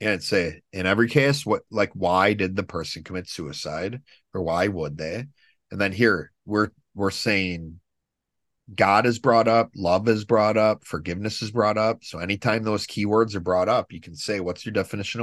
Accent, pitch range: American, 90-115 Hz